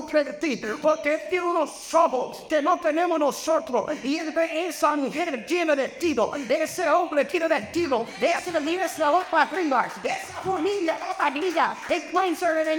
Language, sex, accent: Spanish, male, American